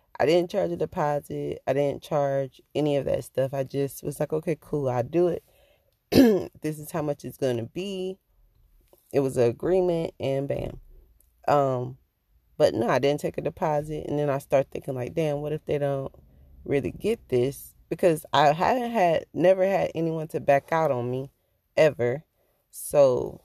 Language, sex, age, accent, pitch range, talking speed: English, female, 20-39, American, 140-185 Hz, 180 wpm